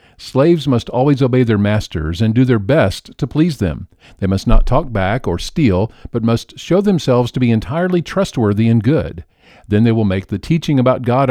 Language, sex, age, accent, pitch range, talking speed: English, male, 50-69, American, 105-150 Hz, 200 wpm